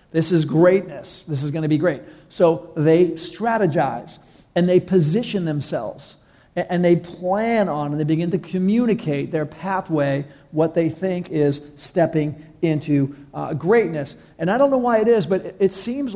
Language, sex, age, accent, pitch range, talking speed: English, male, 40-59, American, 150-180 Hz, 165 wpm